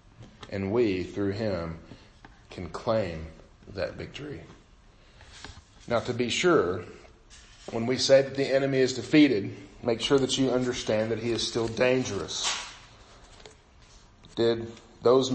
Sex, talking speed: male, 125 wpm